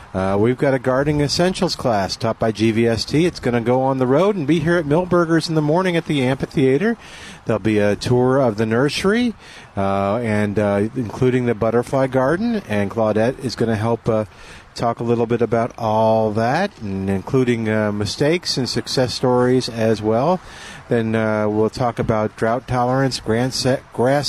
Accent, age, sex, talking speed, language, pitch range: American, 50-69, male, 185 wpm, English, 115-145 Hz